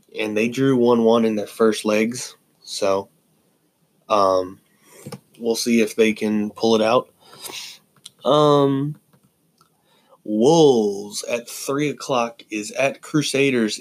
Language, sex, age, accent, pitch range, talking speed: English, male, 20-39, American, 105-125 Hz, 115 wpm